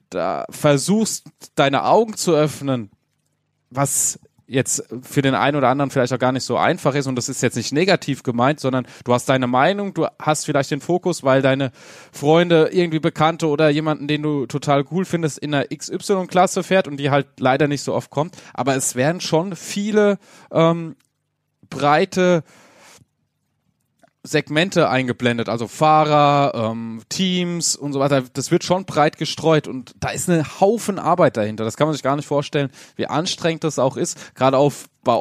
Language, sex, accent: German, male, German